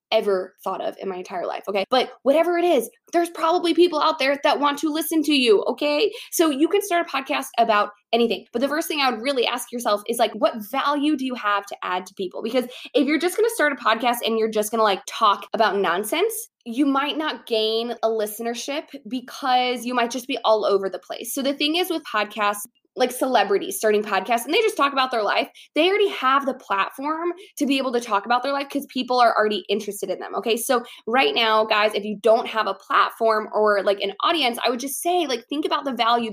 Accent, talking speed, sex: American, 240 wpm, female